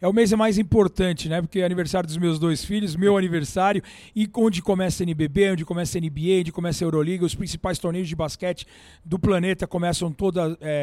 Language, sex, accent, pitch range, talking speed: Portuguese, male, Brazilian, 165-190 Hz, 210 wpm